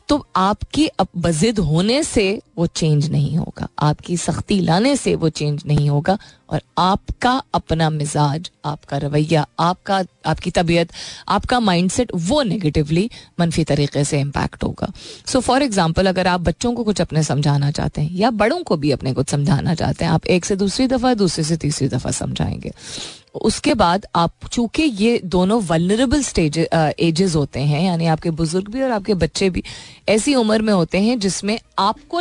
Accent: native